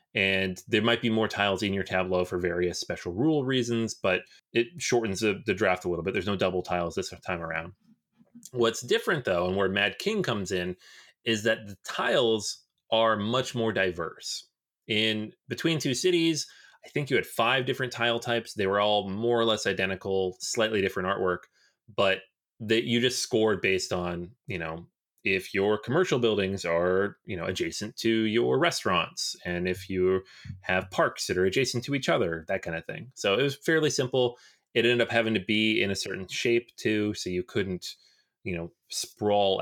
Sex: male